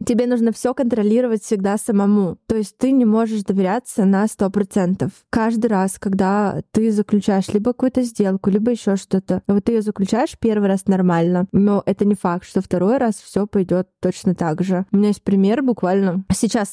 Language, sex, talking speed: Russian, female, 180 wpm